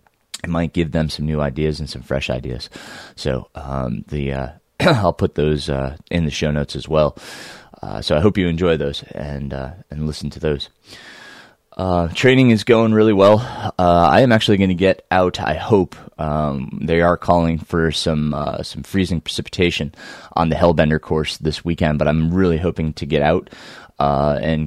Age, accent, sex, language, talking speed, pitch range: 20-39, American, male, English, 190 wpm, 75-90 Hz